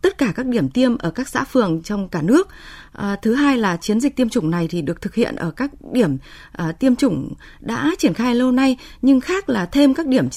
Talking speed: 245 wpm